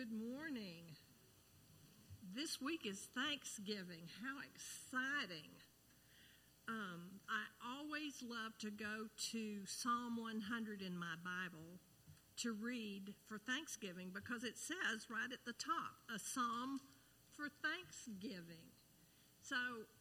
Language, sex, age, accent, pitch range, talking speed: English, female, 50-69, American, 200-250 Hz, 110 wpm